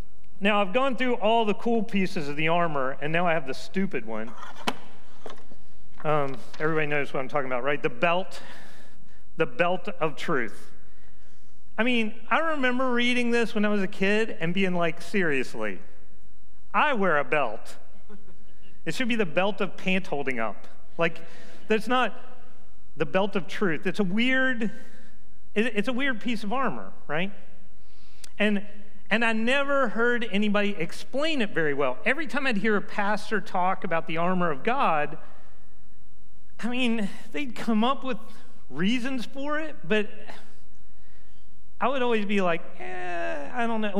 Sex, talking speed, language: male, 160 wpm, English